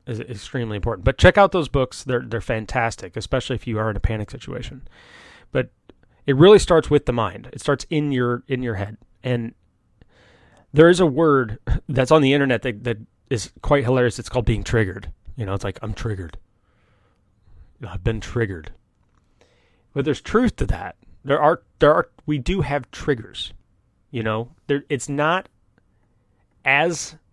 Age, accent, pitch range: 30-49, American, 110-145 Hz